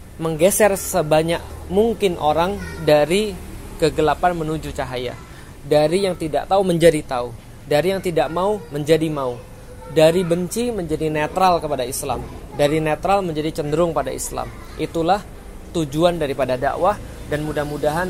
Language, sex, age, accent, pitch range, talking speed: Indonesian, male, 20-39, native, 145-170 Hz, 125 wpm